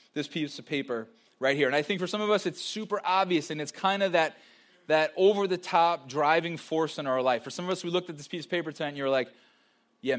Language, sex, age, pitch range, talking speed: English, male, 20-39, 135-170 Hz, 260 wpm